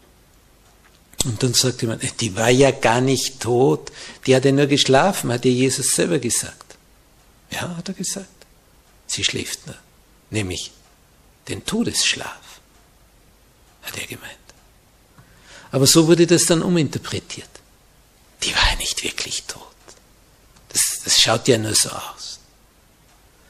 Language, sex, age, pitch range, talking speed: German, male, 60-79, 120-150 Hz, 135 wpm